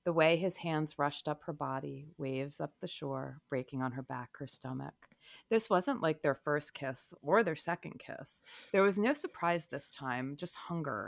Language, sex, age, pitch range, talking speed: English, female, 30-49, 135-165 Hz, 195 wpm